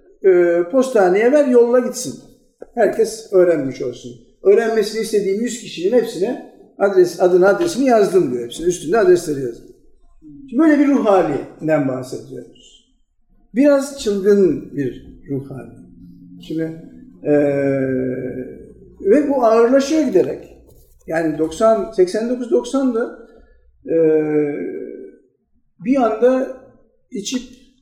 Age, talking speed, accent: 50-69, 90 wpm, native